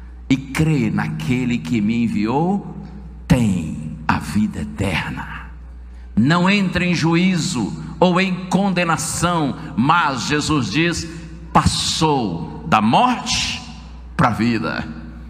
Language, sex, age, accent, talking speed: Portuguese, male, 60-79, Brazilian, 100 wpm